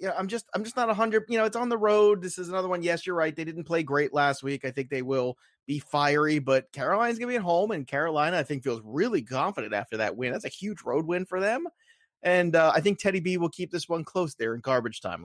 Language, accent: English, American